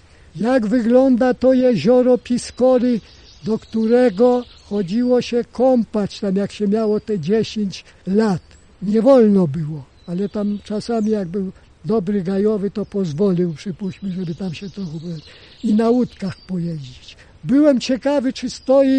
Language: Polish